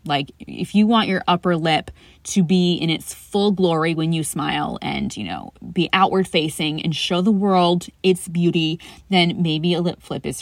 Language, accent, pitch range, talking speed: English, American, 160-205 Hz, 195 wpm